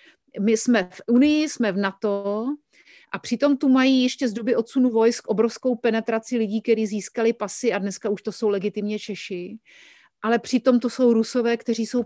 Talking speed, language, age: 180 wpm, Slovak, 40-59